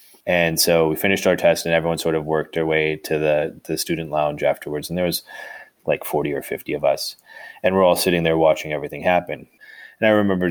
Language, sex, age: English, male, 30-49